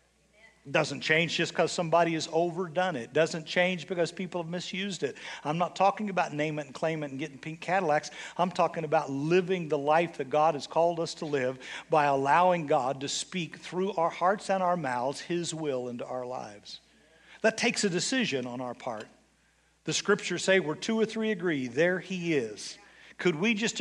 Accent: American